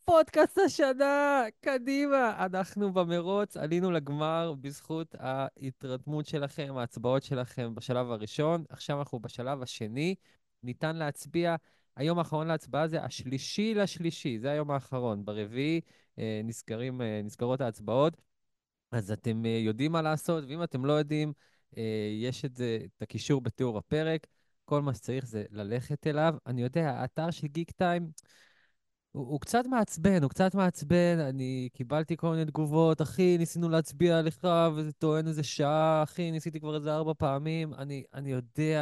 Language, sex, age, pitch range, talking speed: Hebrew, male, 20-39, 120-160 Hz, 140 wpm